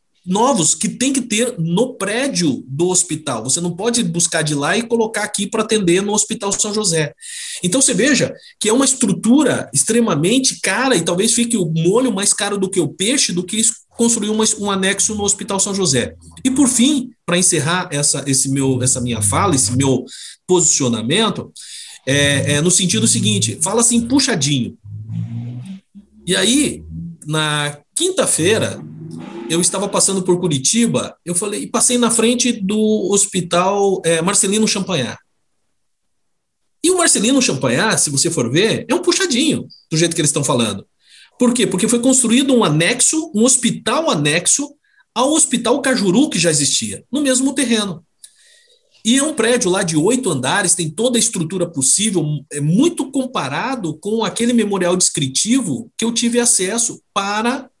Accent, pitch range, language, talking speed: Brazilian, 165-240 Hz, Portuguese, 165 wpm